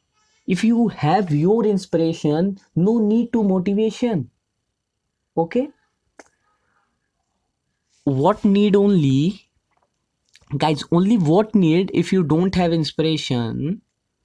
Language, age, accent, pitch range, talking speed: Hindi, 20-39, native, 150-195 Hz, 95 wpm